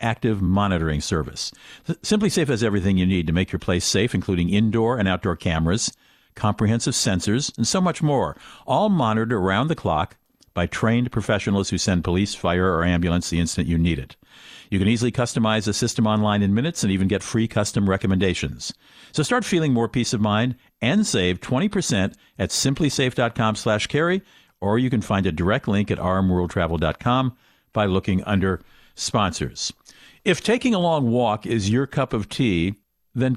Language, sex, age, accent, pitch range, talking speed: English, male, 50-69, American, 95-130 Hz, 170 wpm